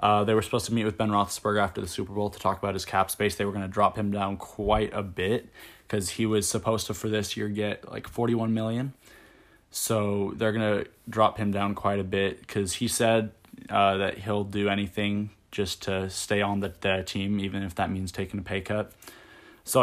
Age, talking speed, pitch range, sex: 20-39, 225 wpm, 100-115 Hz, male